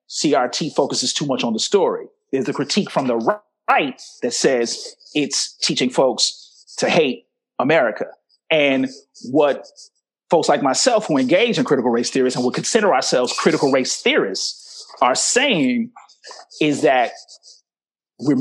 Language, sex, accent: English, male, American